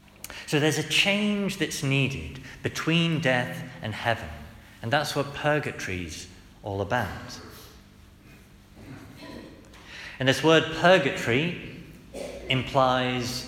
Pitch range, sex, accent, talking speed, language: 105-145 Hz, male, British, 95 wpm, English